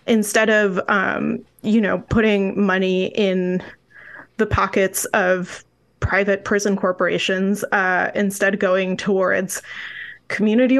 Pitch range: 190-220 Hz